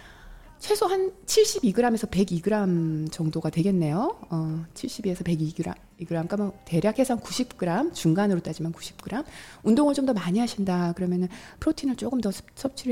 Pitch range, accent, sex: 170-240 Hz, native, female